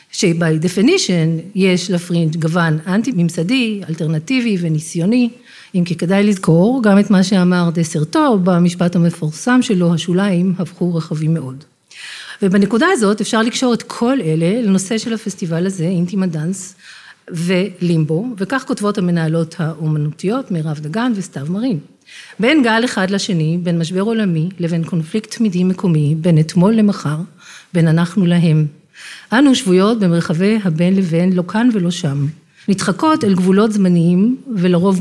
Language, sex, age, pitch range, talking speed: Hebrew, female, 40-59, 170-215 Hz, 130 wpm